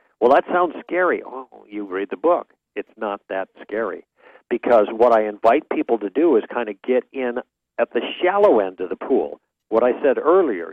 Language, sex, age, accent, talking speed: English, male, 50-69, American, 200 wpm